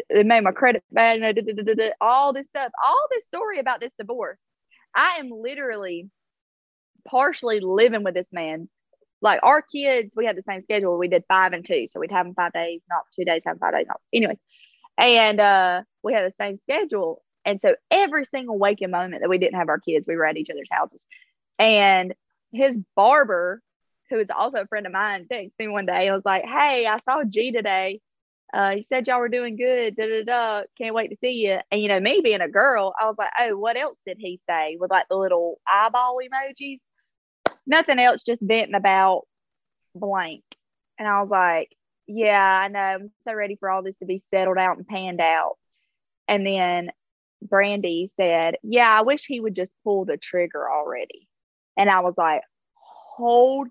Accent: American